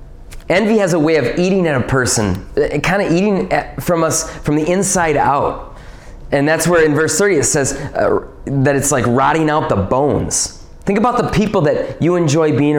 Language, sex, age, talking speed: English, male, 20-39, 200 wpm